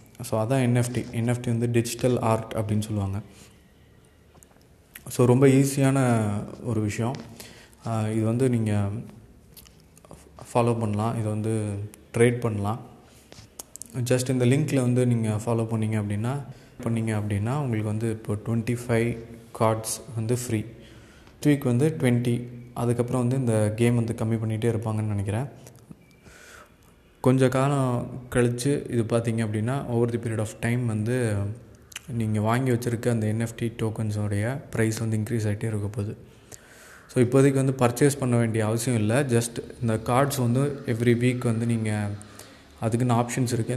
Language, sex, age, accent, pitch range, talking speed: Tamil, male, 20-39, native, 110-125 Hz, 130 wpm